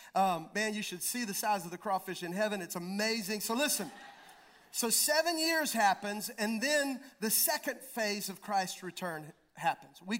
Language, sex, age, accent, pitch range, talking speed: English, male, 40-59, American, 205-250 Hz, 175 wpm